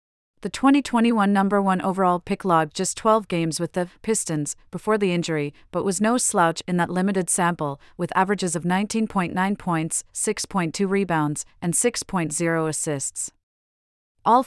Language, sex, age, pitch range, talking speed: English, female, 40-59, 170-200 Hz, 145 wpm